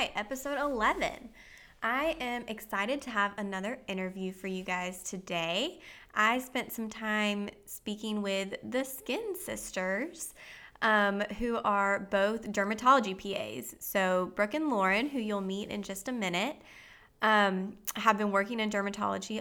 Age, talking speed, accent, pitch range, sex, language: 20-39, 140 wpm, American, 195-255 Hz, female, English